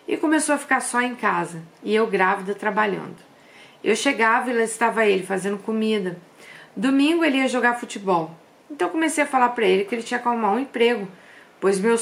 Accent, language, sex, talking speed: Brazilian, Portuguese, female, 195 wpm